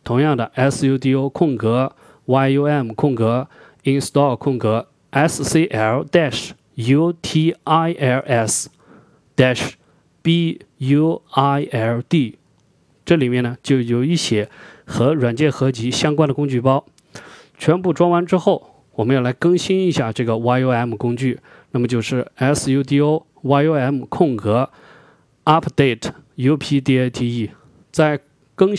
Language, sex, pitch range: Chinese, male, 125-155 Hz